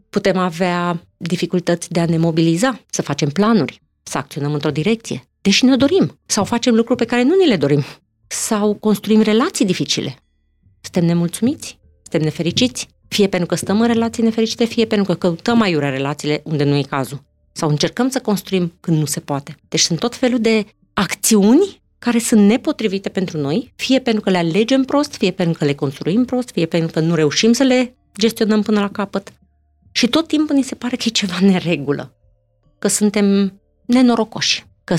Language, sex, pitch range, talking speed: Romanian, female, 160-230 Hz, 185 wpm